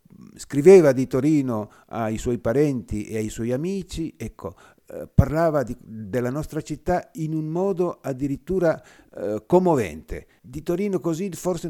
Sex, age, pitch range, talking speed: male, 50-69, 115-165 Hz, 140 wpm